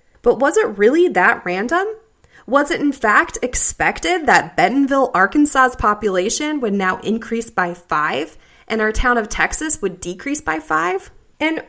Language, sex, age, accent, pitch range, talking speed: English, female, 20-39, American, 200-315 Hz, 155 wpm